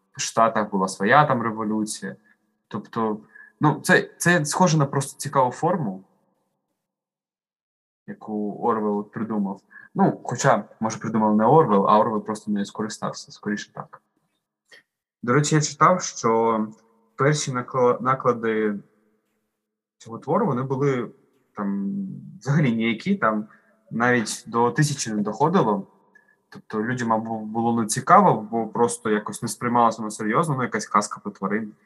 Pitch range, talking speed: 110-140 Hz, 130 wpm